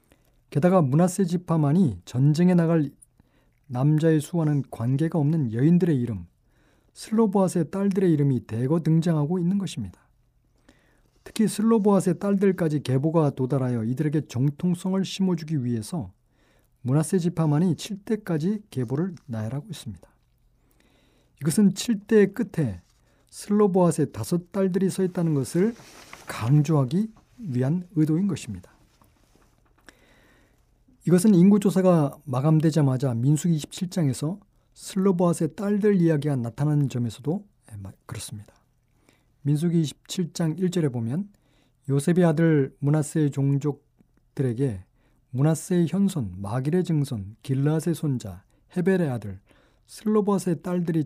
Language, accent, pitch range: Korean, native, 125-180 Hz